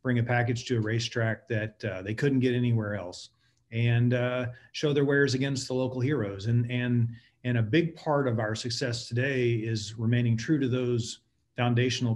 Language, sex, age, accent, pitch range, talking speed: English, male, 40-59, American, 115-130 Hz, 190 wpm